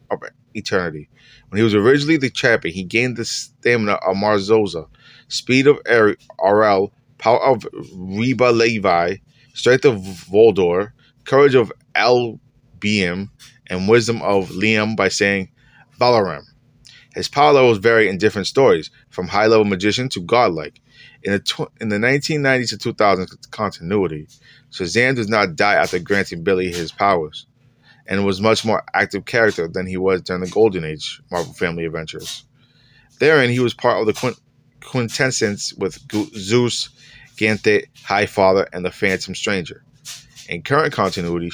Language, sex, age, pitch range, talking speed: English, male, 30-49, 95-130 Hz, 145 wpm